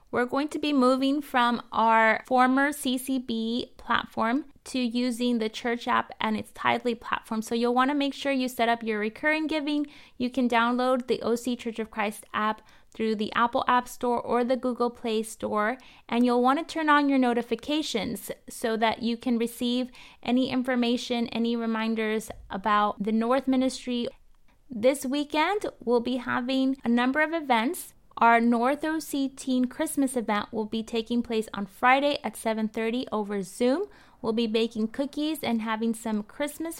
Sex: female